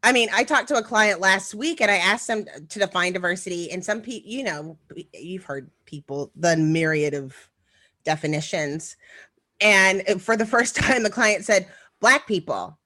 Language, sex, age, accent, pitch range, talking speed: English, female, 30-49, American, 175-225 Hz, 175 wpm